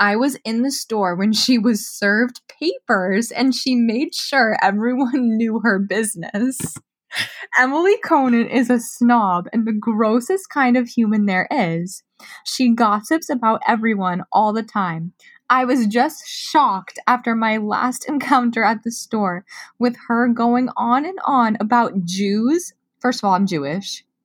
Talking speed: 155 wpm